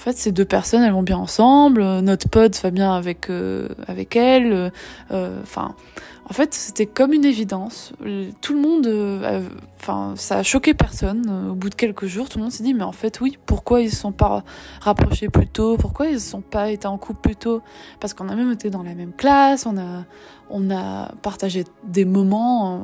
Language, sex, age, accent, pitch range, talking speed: French, female, 20-39, French, 190-225 Hz, 215 wpm